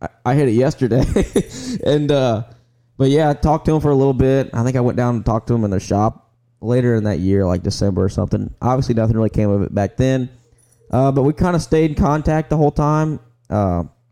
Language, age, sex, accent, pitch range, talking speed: English, 10-29, male, American, 100-120 Hz, 240 wpm